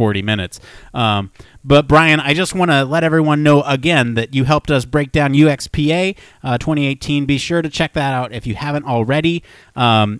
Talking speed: 195 wpm